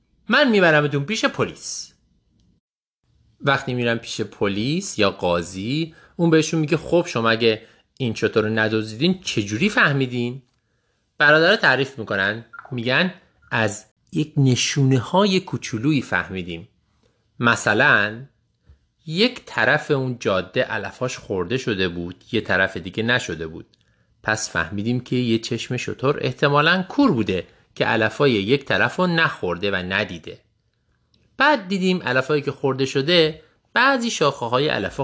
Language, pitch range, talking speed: Persian, 110-155 Hz, 120 wpm